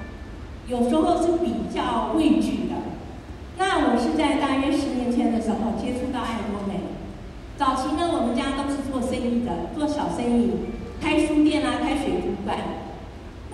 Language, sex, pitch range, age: Chinese, female, 235-310 Hz, 40-59